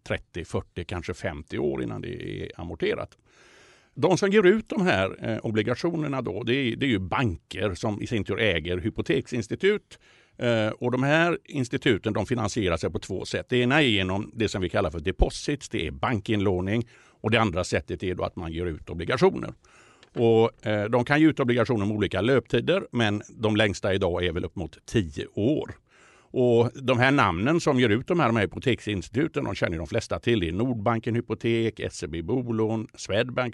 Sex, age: male, 60-79